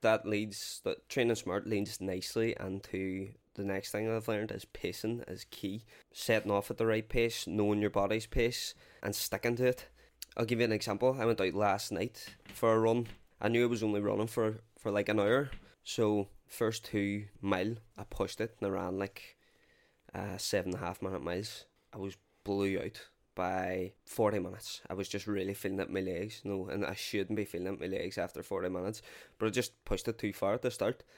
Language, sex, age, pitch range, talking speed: English, male, 20-39, 95-115 Hz, 210 wpm